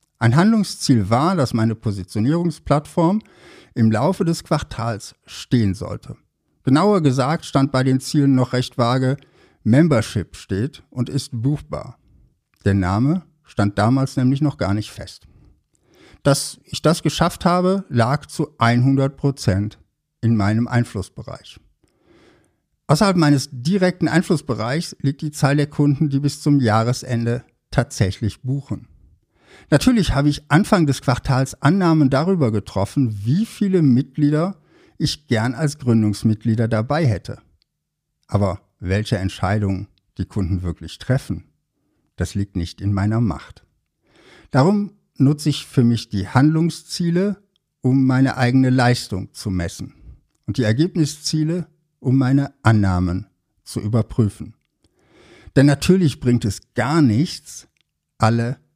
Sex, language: male, German